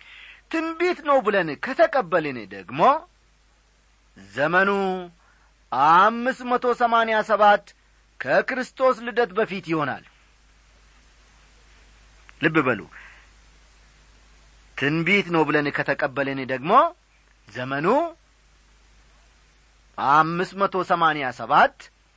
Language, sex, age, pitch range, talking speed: Amharic, male, 40-59, 150-235 Hz, 50 wpm